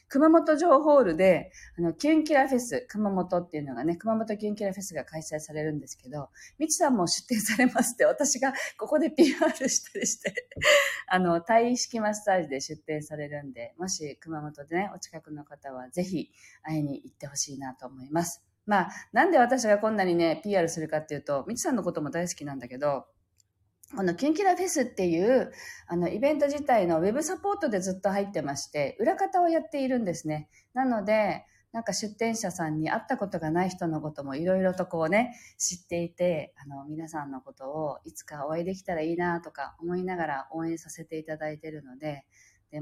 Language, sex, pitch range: Japanese, female, 150-230 Hz